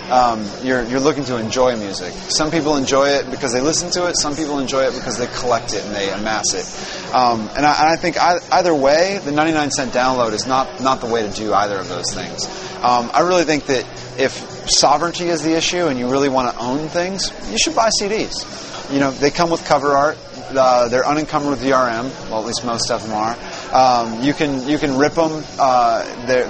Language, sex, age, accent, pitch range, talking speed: English, male, 30-49, American, 125-150 Hz, 225 wpm